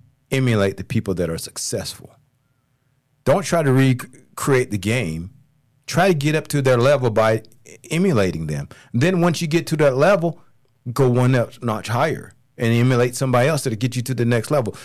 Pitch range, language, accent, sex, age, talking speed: 110-140 Hz, English, American, male, 40-59, 180 wpm